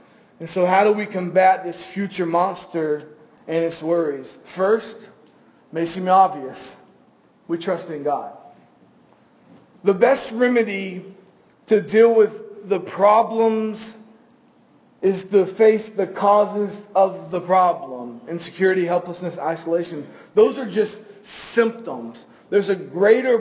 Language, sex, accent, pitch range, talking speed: English, male, American, 180-220 Hz, 120 wpm